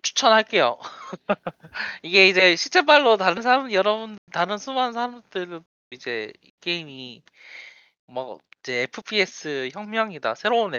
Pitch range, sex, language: 140-215 Hz, male, Korean